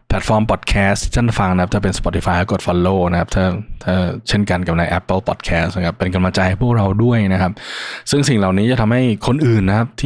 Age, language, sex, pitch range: 20-39, Thai, male, 90-110 Hz